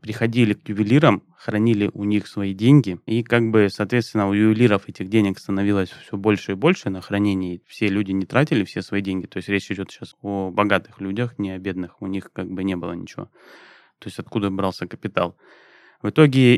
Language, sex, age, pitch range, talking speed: Russian, male, 20-39, 95-120 Hz, 200 wpm